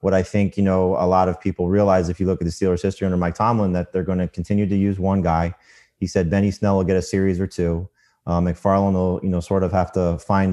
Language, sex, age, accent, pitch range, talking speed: English, male, 30-49, American, 90-105 Hz, 280 wpm